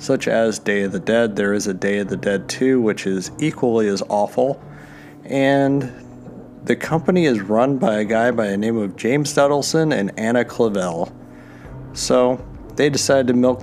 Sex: male